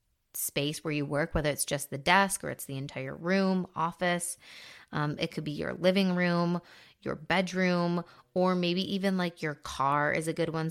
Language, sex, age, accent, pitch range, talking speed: English, female, 20-39, American, 155-185 Hz, 190 wpm